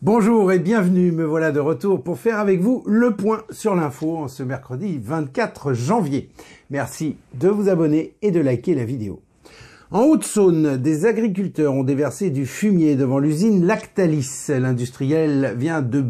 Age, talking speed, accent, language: 50-69, 155 wpm, French, French